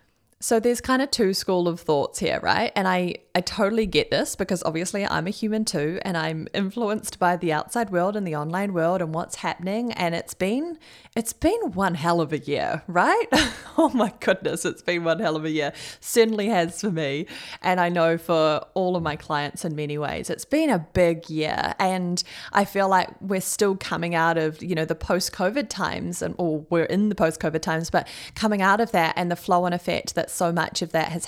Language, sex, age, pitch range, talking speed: English, female, 20-39, 160-210 Hz, 225 wpm